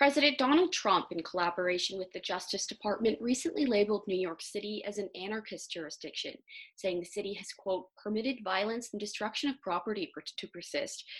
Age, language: 20-39, English